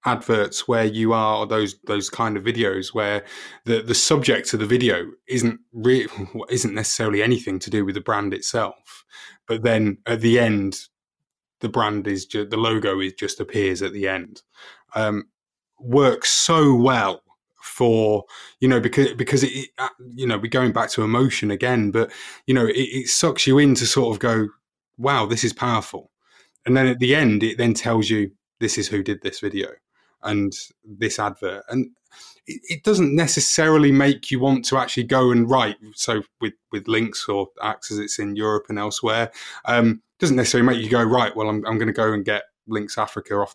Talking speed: 190 wpm